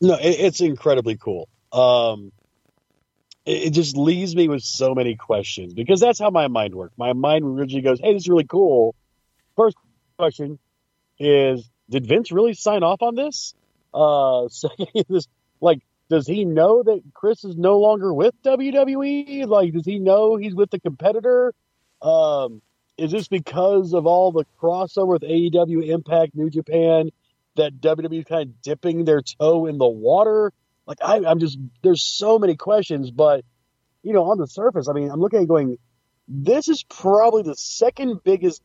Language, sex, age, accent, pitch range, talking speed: English, male, 40-59, American, 130-190 Hz, 170 wpm